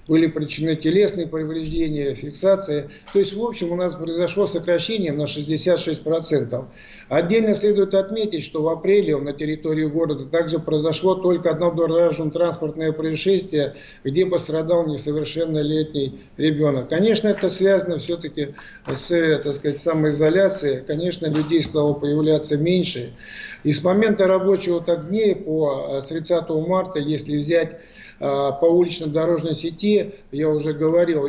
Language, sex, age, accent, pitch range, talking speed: Russian, male, 50-69, native, 150-175 Hz, 125 wpm